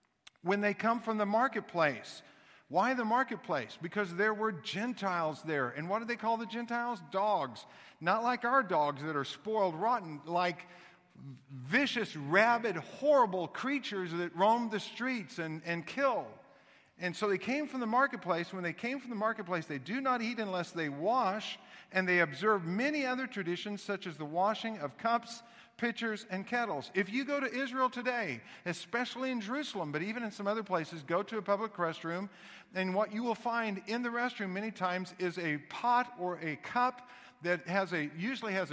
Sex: male